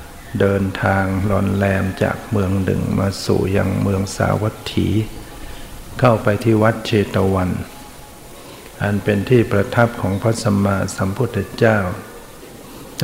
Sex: male